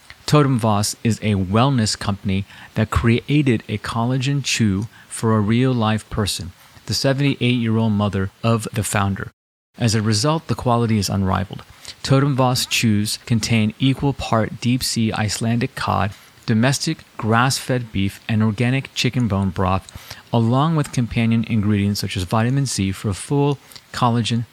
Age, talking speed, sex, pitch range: 30-49, 135 wpm, male, 105-125 Hz